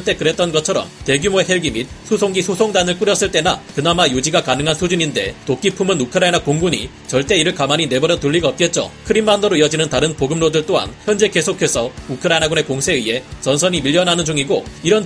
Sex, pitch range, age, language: male, 150-190 Hz, 30-49, Korean